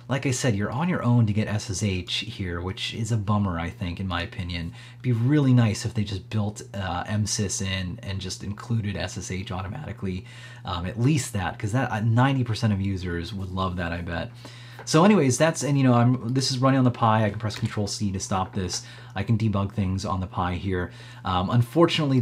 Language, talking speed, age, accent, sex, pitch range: English, 220 wpm, 30-49, American, male, 100-125 Hz